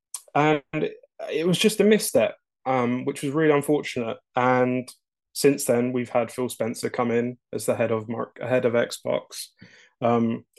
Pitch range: 115-130 Hz